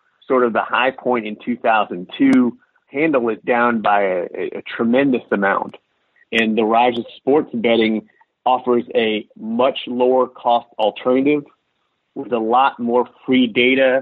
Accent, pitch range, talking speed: American, 120-170 Hz, 140 wpm